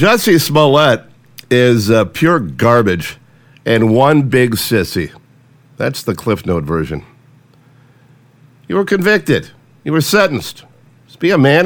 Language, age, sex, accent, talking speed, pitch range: English, 50-69, male, American, 130 wpm, 125-160 Hz